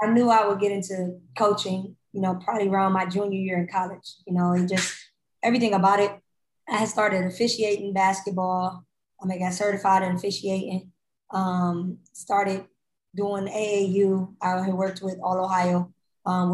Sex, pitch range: female, 185-205 Hz